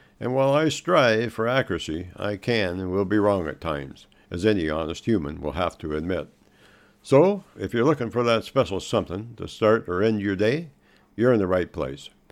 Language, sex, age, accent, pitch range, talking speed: English, male, 60-79, American, 85-115 Hz, 200 wpm